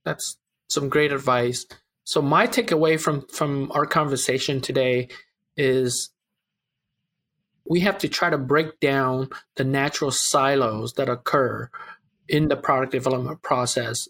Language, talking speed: English, 130 wpm